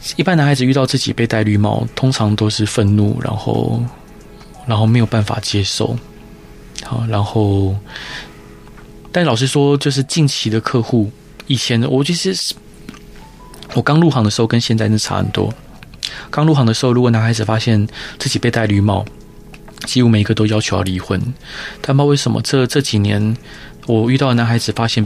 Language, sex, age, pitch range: Chinese, male, 20-39, 110-130 Hz